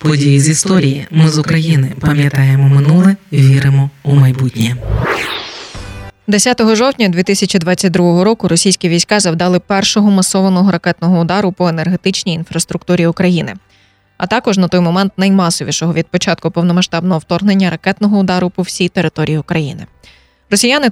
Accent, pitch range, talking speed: native, 160-195 Hz, 125 wpm